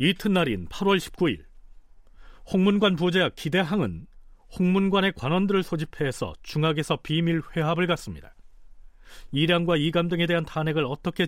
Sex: male